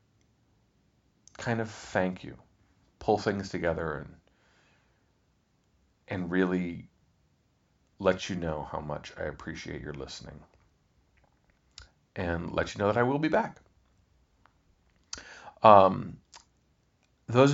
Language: English